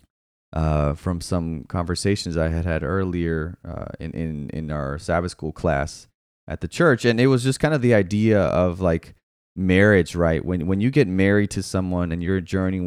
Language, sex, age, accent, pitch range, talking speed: English, male, 20-39, American, 90-120 Hz, 190 wpm